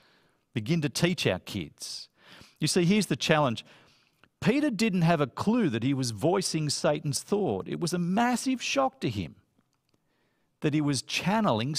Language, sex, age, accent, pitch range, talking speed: English, male, 50-69, Australian, 140-195 Hz, 165 wpm